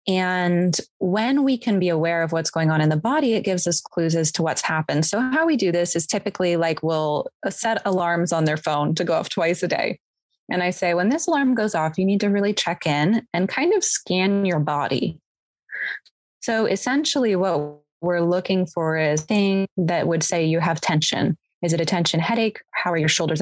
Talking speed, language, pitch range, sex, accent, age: 215 wpm, English, 160-200 Hz, female, American, 20-39